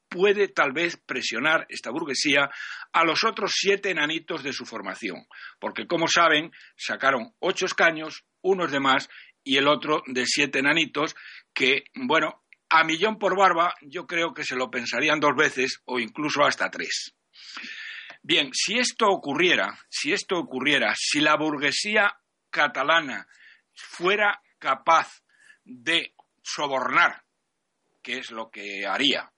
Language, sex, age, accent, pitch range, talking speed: Spanish, male, 60-79, Spanish, 135-185 Hz, 135 wpm